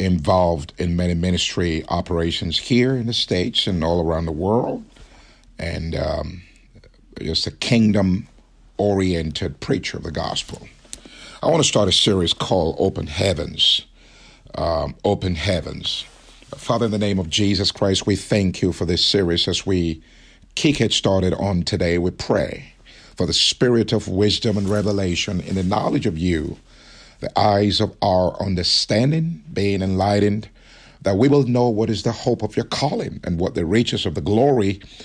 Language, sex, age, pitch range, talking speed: English, male, 50-69, 90-120 Hz, 160 wpm